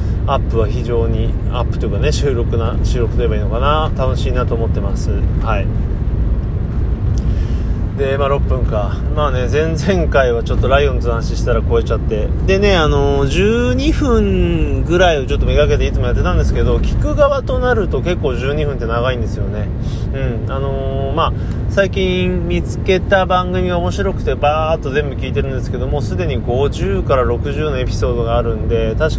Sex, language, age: male, Japanese, 30-49